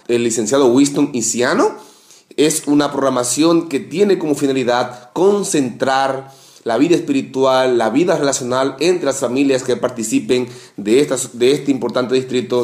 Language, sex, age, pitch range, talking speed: English, male, 30-49, 125-155 Hz, 140 wpm